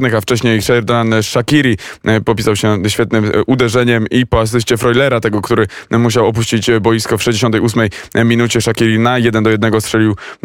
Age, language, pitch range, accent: 20-39, Polish, 110-125 Hz, native